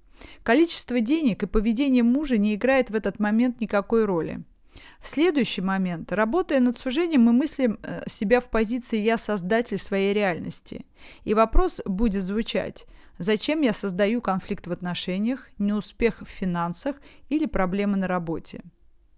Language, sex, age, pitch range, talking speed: Russian, female, 30-49, 195-255 Hz, 135 wpm